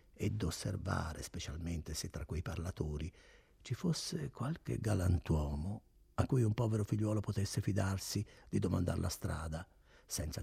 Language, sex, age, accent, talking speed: Italian, male, 60-79, native, 130 wpm